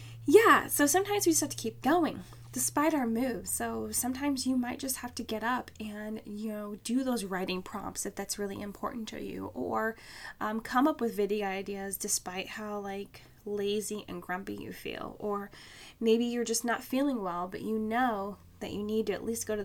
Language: English